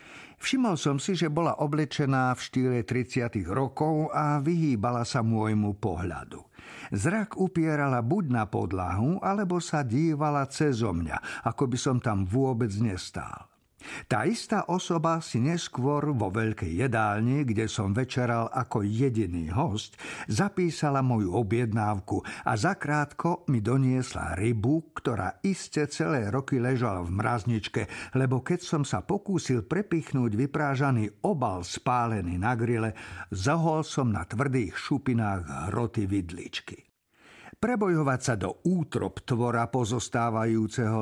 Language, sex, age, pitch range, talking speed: Slovak, male, 50-69, 110-145 Hz, 120 wpm